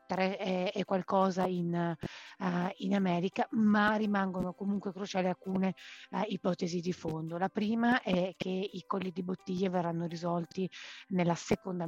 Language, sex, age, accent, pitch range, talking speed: Italian, female, 30-49, native, 175-195 Hz, 135 wpm